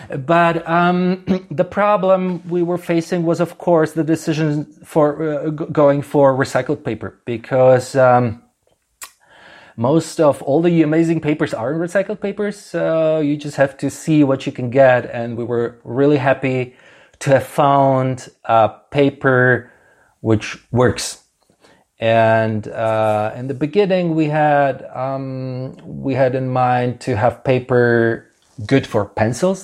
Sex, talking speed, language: male, 140 wpm, Swedish